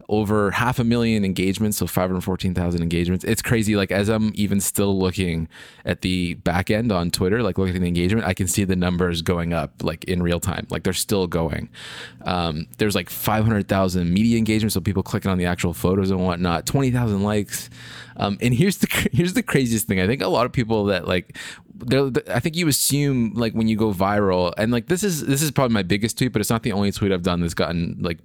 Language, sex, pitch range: English, male, 90-115 Hz